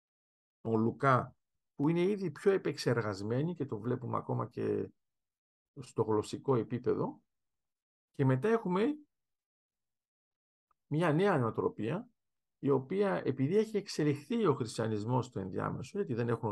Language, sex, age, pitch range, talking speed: Greek, male, 50-69, 115-150 Hz, 120 wpm